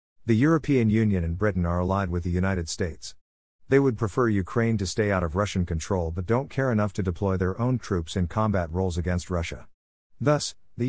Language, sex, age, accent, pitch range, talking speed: English, male, 50-69, American, 90-115 Hz, 205 wpm